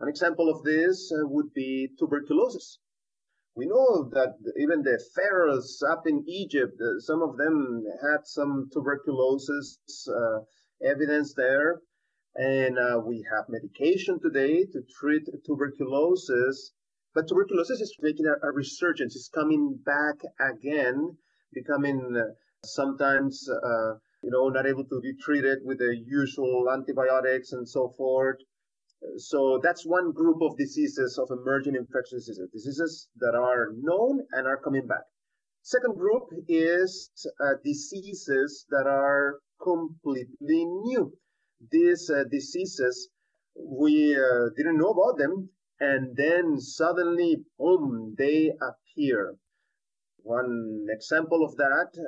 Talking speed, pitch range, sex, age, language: 125 wpm, 130-165 Hz, male, 30-49, English